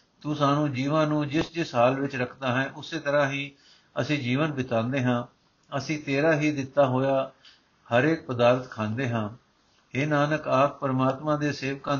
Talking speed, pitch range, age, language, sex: 165 wpm, 130-155 Hz, 60-79, Punjabi, male